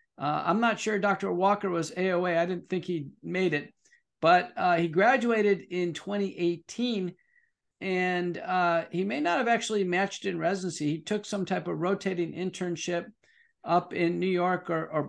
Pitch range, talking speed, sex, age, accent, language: 175-225 Hz, 170 wpm, male, 50-69, American, English